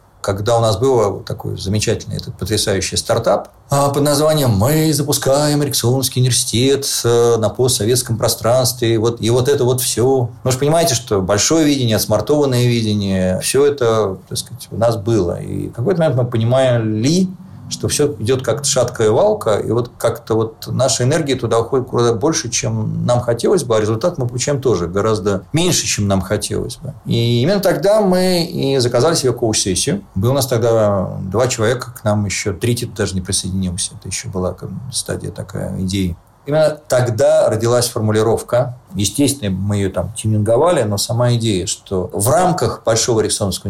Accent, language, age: native, Russian, 40-59